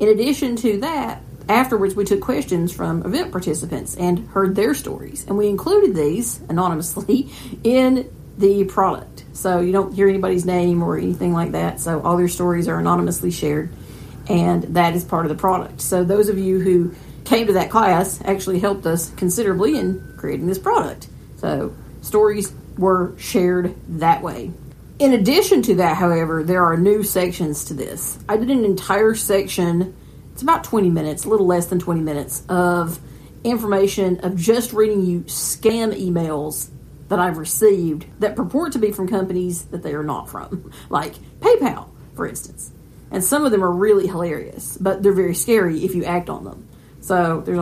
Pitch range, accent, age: 170-200 Hz, American, 40-59